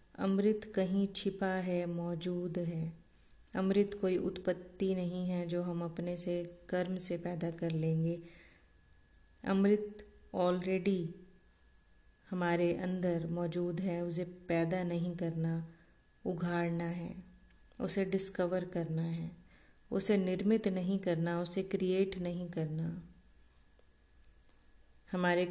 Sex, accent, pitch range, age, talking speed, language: female, native, 170-185 Hz, 30-49, 105 wpm, Hindi